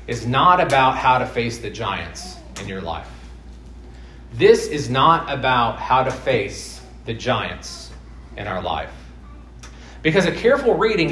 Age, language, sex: 40-59, English, male